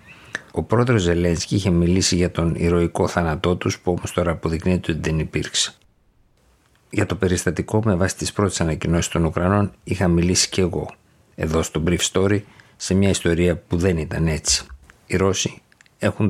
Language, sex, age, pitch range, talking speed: Greek, male, 50-69, 85-95 Hz, 165 wpm